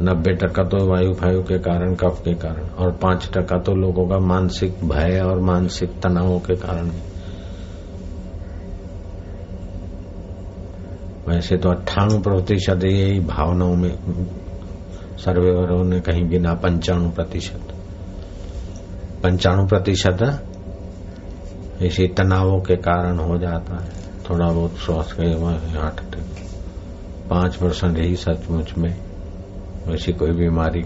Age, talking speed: 60-79, 105 wpm